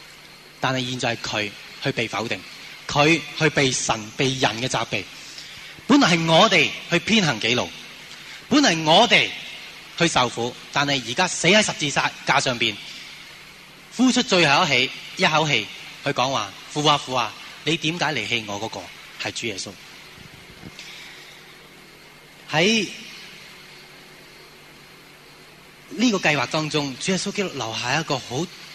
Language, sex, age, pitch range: Chinese, male, 20-39, 130-175 Hz